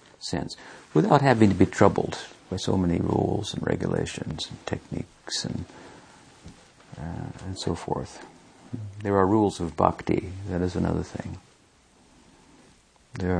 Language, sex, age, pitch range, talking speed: English, male, 50-69, 85-105 Hz, 130 wpm